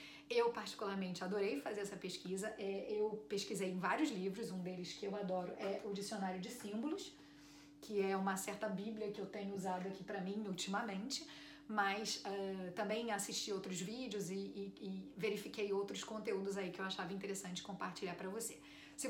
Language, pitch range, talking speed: Portuguese, 190-230 Hz, 165 wpm